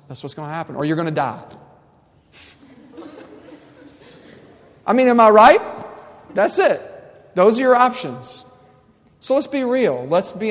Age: 40-59